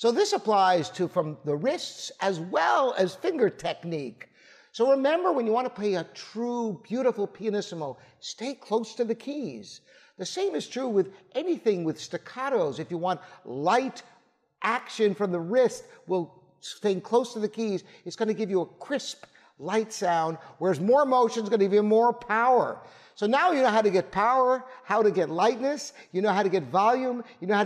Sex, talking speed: male, 190 wpm